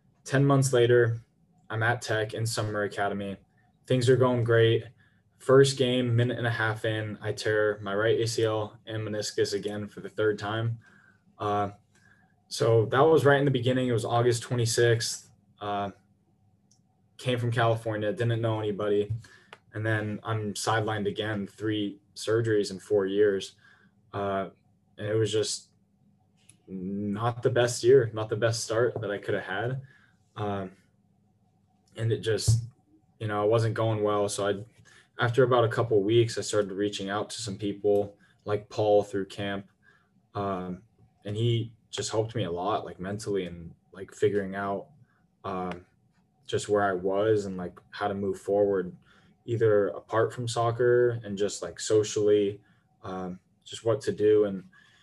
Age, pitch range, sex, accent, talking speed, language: 10-29, 100-120 Hz, male, American, 160 wpm, English